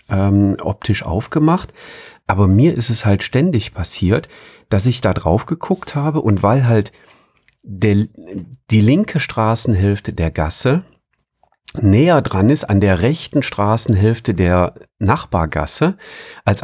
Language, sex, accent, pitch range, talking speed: German, male, German, 90-115 Hz, 125 wpm